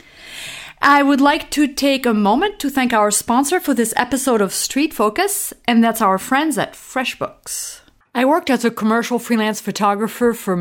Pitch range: 200-255 Hz